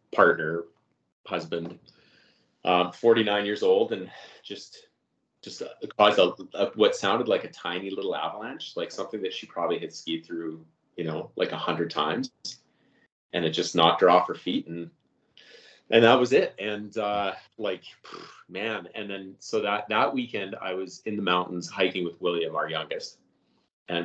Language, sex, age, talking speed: English, male, 30-49, 170 wpm